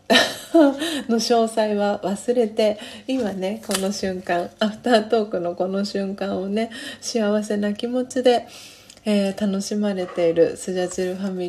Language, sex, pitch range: Japanese, female, 175-225 Hz